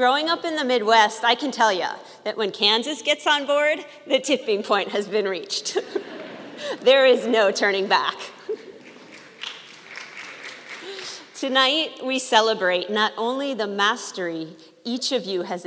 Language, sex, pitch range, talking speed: English, female, 190-265 Hz, 140 wpm